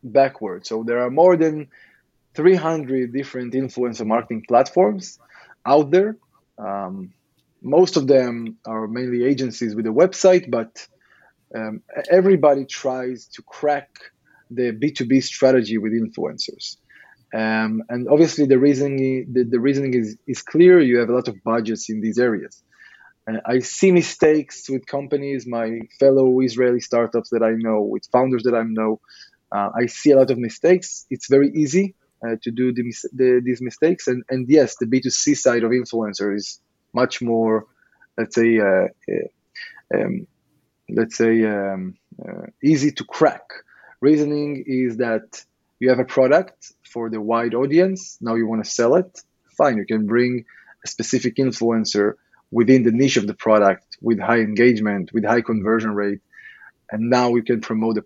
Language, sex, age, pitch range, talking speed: English, male, 20-39, 115-140 Hz, 160 wpm